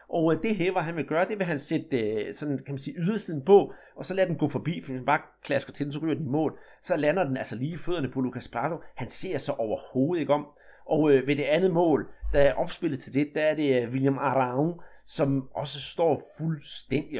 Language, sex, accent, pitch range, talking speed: Danish, male, native, 135-170 Hz, 230 wpm